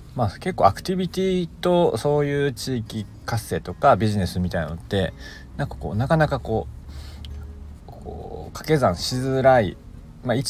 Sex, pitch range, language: male, 90-120 Hz, Japanese